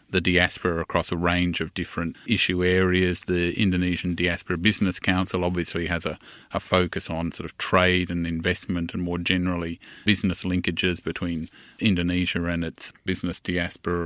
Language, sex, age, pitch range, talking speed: English, male, 30-49, 85-95 Hz, 155 wpm